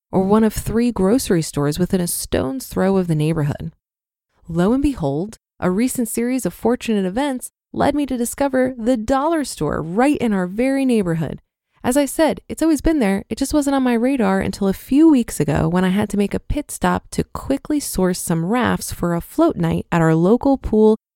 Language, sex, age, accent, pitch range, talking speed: English, female, 20-39, American, 185-250 Hz, 205 wpm